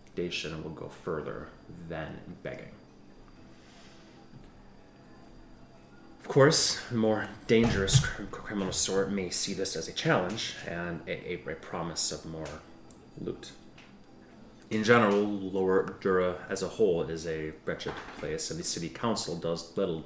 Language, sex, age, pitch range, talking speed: English, male, 30-49, 75-95 Hz, 125 wpm